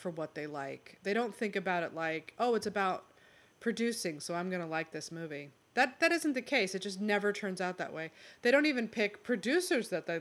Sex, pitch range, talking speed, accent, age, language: female, 170-220 Hz, 235 wpm, American, 30-49, English